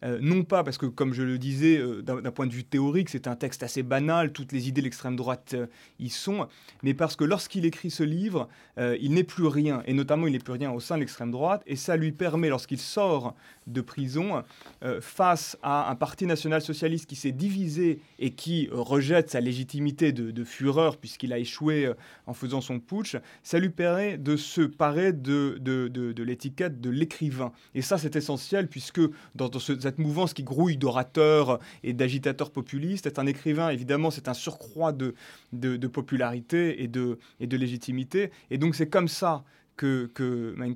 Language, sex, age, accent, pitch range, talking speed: French, male, 30-49, French, 130-165 Hz, 205 wpm